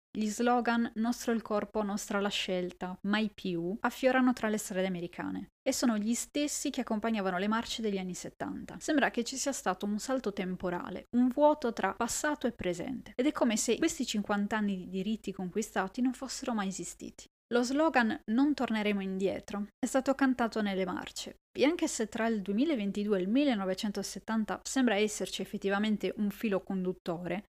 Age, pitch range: 20-39, 195-245 Hz